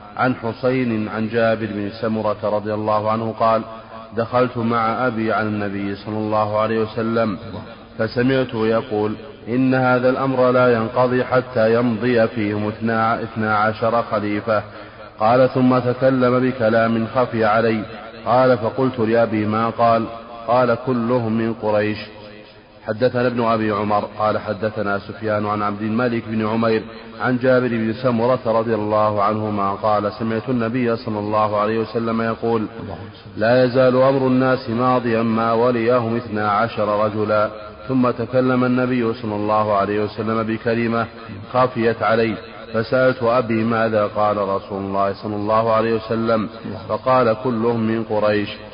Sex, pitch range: male, 105-120 Hz